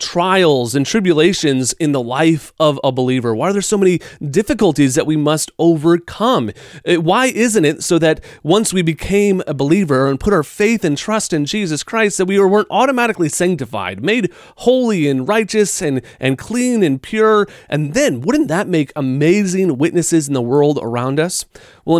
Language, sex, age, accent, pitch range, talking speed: English, male, 30-49, American, 140-195 Hz, 175 wpm